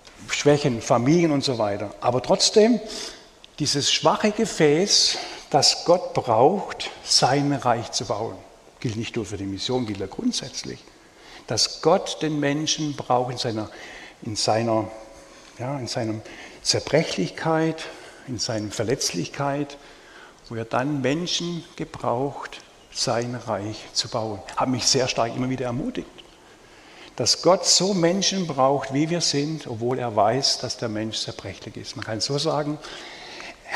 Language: German